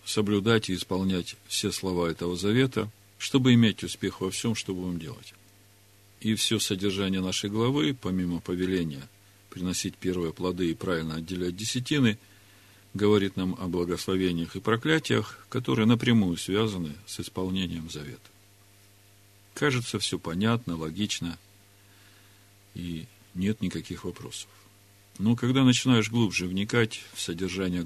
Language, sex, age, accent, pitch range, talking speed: Russian, male, 50-69, native, 95-105 Hz, 120 wpm